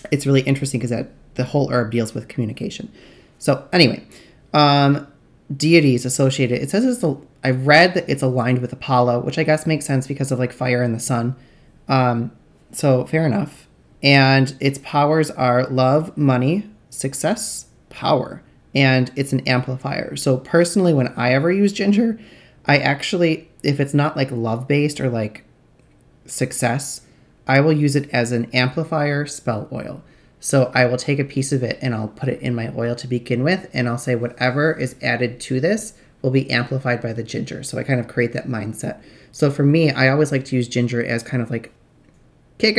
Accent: American